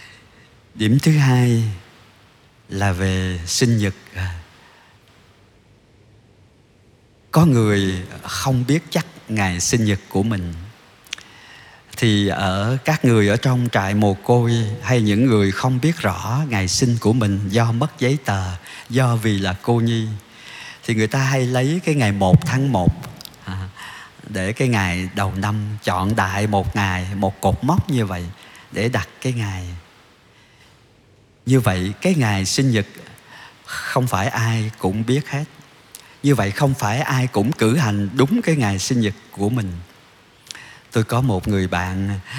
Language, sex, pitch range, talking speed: Vietnamese, male, 100-125 Hz, 150 wpm